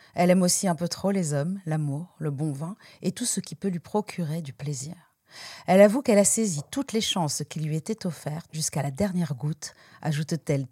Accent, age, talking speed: French, 50-69, 215 wpm